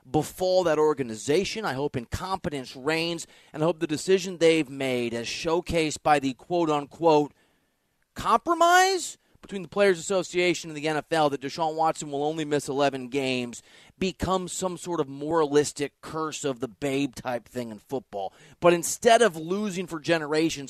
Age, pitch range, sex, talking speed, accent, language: 30-49, 130-175 Hz, male, 160 wpm, American, English